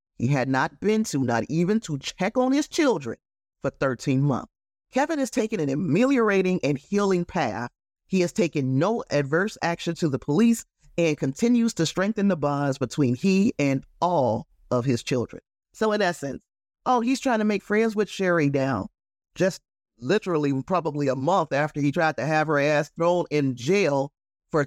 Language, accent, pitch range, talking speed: English, American, 130-170 Hz, 180 wpm